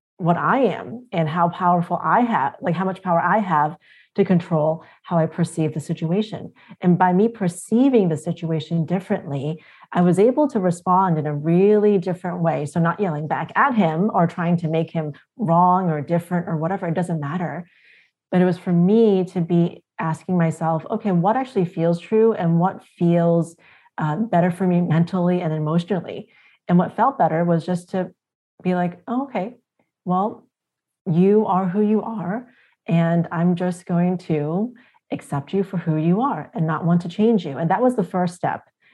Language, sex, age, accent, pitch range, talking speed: English, female, 30-49, American, 165-195 Hz, 185 wpm